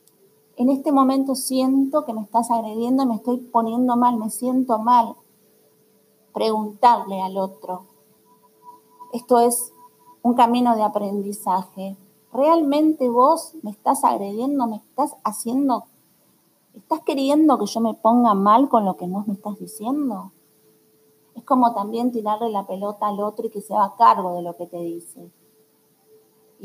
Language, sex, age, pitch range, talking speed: Spanish, female, 40-59, 205-255 Hz, 145 wpm